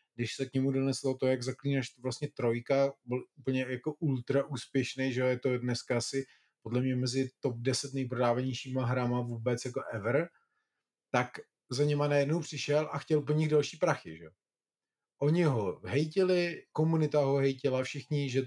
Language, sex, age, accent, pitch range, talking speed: Czech, male, 30-49, native, 125-145 Hz, 165 wpm